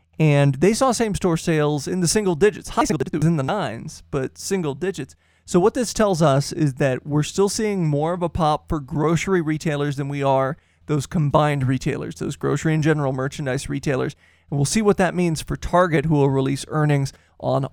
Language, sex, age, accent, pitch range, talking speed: English, male, 20-39, American, 135-165 Hz, 205 wpm